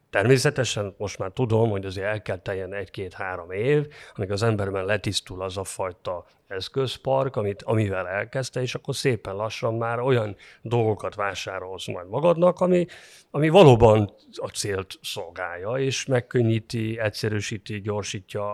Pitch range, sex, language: 100-135 Hz, male, Hungarian